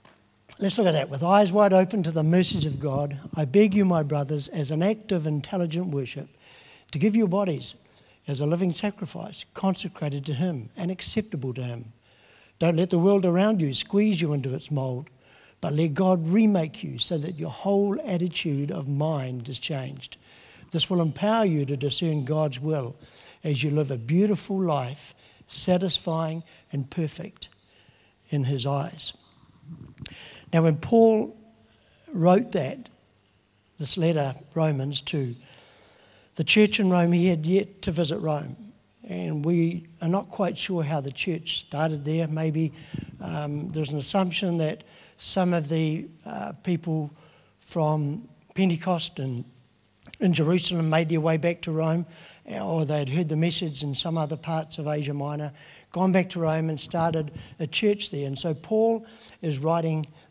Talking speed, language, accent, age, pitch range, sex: 160 wpm, English, Australian, 60-79, 145-180 Hz, male